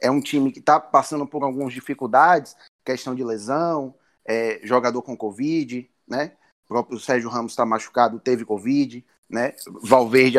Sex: male